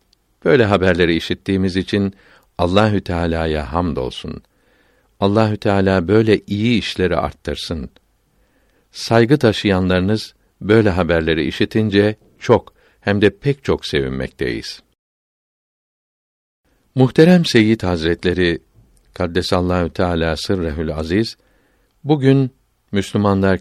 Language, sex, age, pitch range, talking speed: Turkish, male, 60-79, 90-110 Hz, 85 wpm